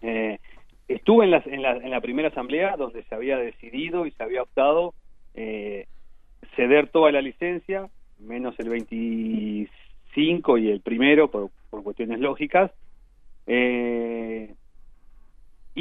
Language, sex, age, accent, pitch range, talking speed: Spanish, male, 40-59, Argentinian, 120-160 Hz, 130 wpm